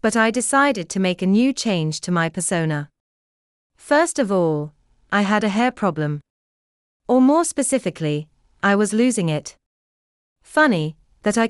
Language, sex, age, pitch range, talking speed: English, female, 30-49, 150-230 Hz, 150 wpm